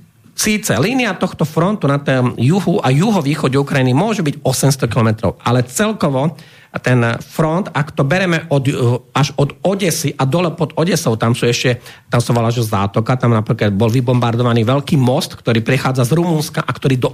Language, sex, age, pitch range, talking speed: Slovak, male, 40-59, 120-160 Hz, 170 wpm